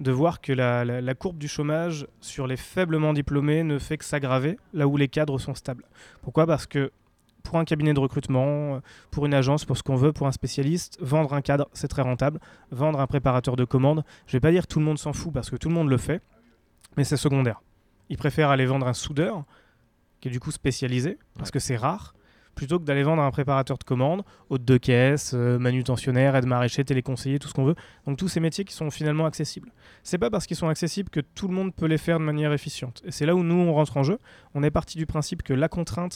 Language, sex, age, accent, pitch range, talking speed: French, male, 20-39, French, 135-165 Hz, 245 wpm